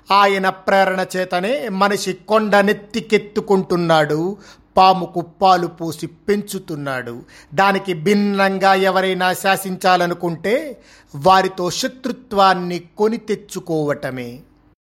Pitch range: 185-230 Hz